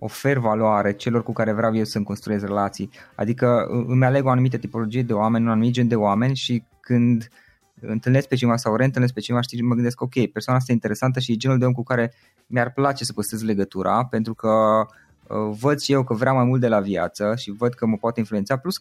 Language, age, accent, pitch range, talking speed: Romanian, 20-39, native, 110-140 Hz, 225 wpm